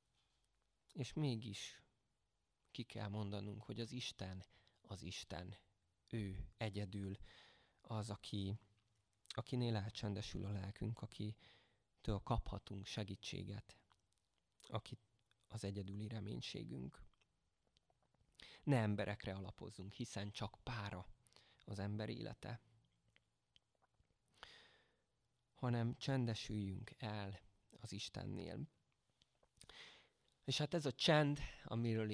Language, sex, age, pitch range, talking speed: Hungarian, male, 20-39, 100-125 Hz, 90 wpm